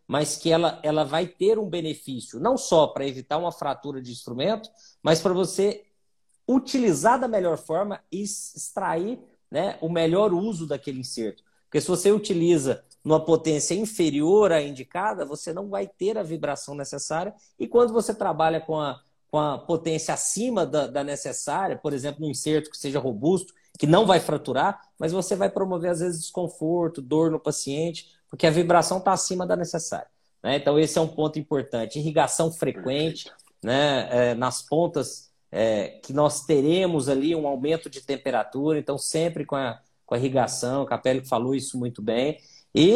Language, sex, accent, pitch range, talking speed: Portuguese, male, Brazilian, 140-185 Hz, 175 wpm